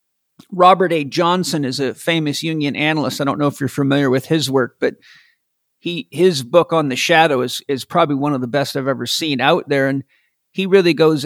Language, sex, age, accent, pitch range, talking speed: English, male, 50-69, American, 135-165 Hz, 215 wpm